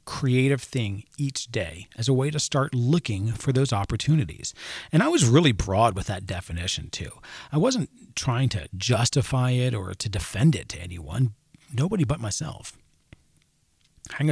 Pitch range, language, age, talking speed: 105-145 Hz, English, 40-59, 160 wpm